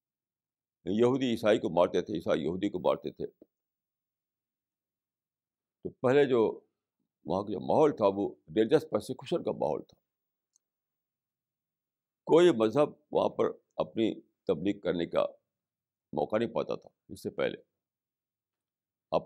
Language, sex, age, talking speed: Urdu, male, 60-79, 120 wpm